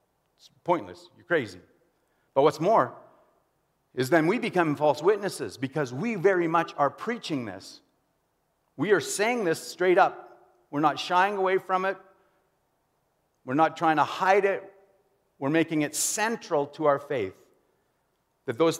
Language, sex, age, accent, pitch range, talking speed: English, male, 50-69, American, 145-195 Hz, 145 wpm